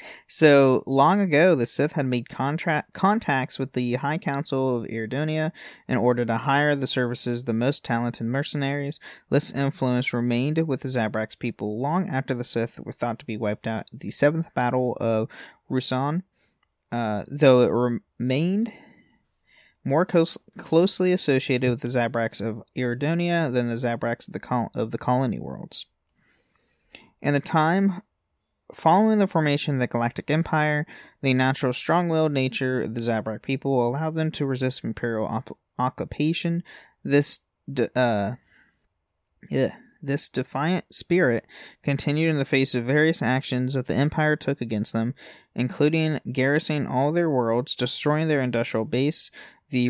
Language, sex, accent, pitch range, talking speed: English, male, American, 120-150 Hz, 155 wpm